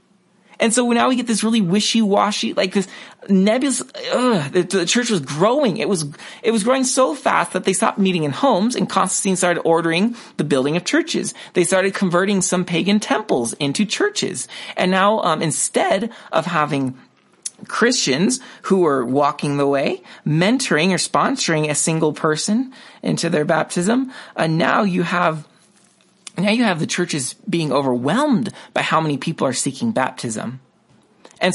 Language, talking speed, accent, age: English, 165 wpm, American, 30-49